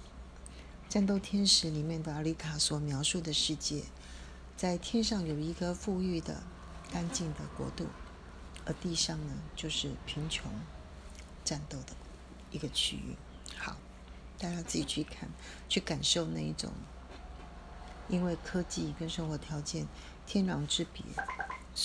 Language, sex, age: Chinese, female, 40-59